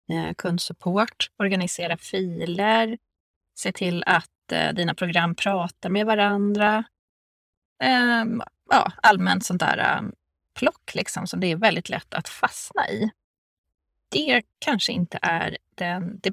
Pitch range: 170-225 Hz